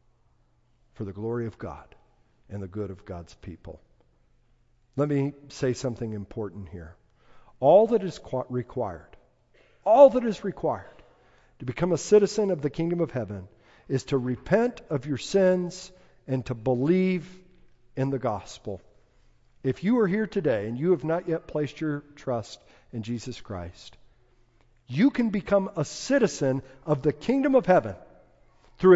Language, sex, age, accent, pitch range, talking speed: English, male, 50-69, American, 115-165 Hz, 150 wpm